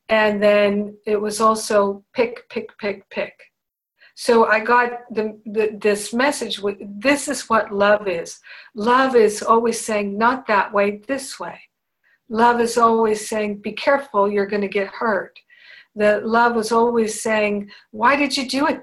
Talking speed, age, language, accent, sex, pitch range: 165 wpm, 50-69, English, American, female, 205-245 Hz